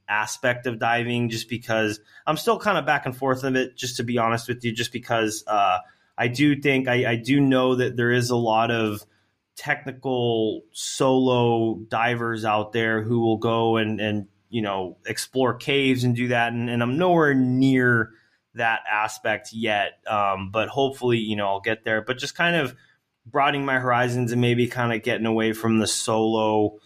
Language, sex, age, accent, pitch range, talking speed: English, male, 20-39, American, 110-130 Hz, 190 wpm